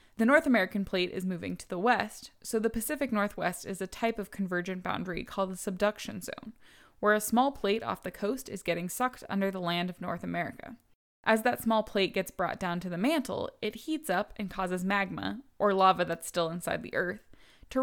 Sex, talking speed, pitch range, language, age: female, 210 wpm, 185-230 Hz, English, 20-39